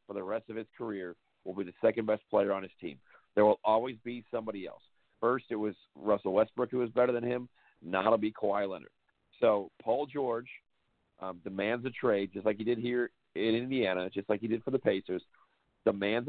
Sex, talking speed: male, 210 wpm